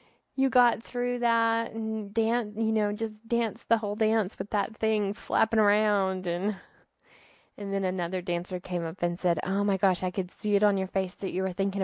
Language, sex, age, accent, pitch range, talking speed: English, female, 20-39, American, 175-220 Hz, 210 wpm